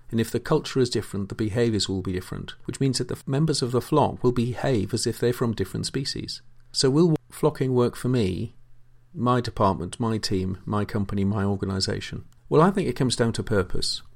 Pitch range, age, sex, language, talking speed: 105-130 Hz, 40-59, male, English, 210 wpm